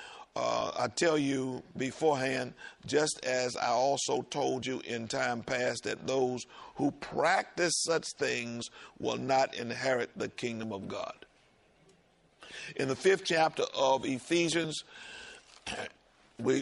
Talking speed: 125 wpm